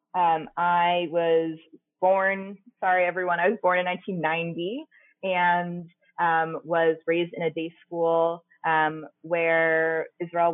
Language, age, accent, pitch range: English, 20-39, American, 160-185 Hz